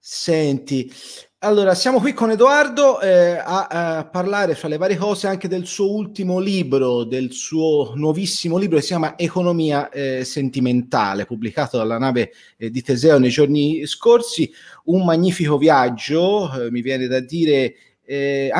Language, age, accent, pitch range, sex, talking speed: Italian, 30-49, native, 130-180 Hz, male, 150 wpm